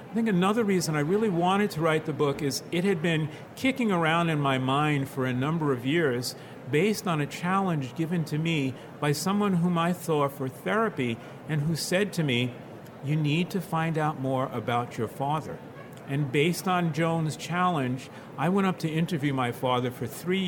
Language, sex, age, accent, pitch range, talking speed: English, male, 50-69, American, 135-175 Hz, 195 wpm